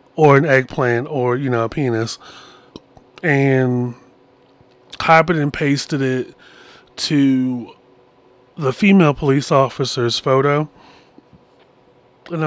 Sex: male